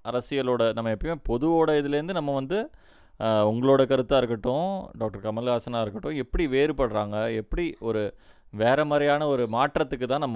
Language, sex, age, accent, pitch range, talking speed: Tamil, male, 20-39, native, 105-135 Hz, 125 wpm